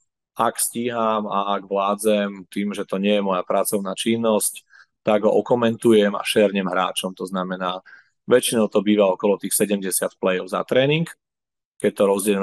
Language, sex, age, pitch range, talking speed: Slovak, male, 30-49, 95-105 Hz, 160 wpm